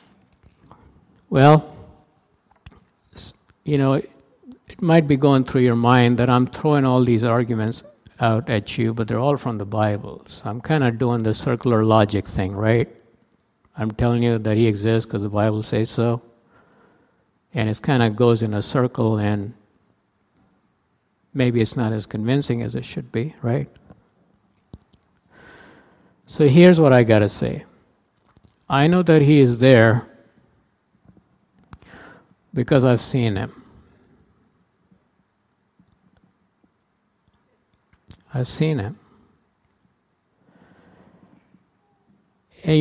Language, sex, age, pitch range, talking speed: English, male, 50-69, 115-130 Hz, 120 wpm